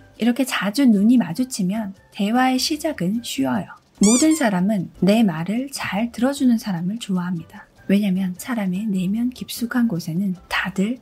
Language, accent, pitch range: Korean, native, 195-255 Hz